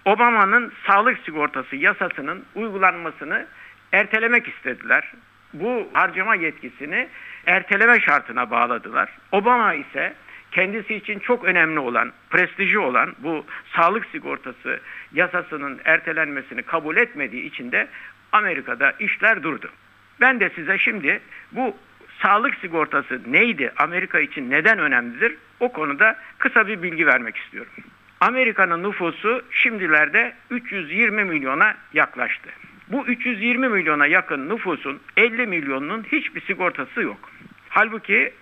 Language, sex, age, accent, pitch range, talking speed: Turkish, male, 60-79, native, 165-245 Hz, 110 wpm